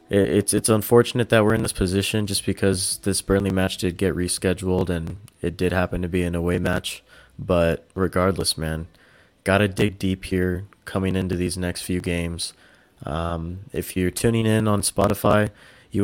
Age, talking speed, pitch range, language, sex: 20-39, 175 wpm, 90-100 Hz, English, male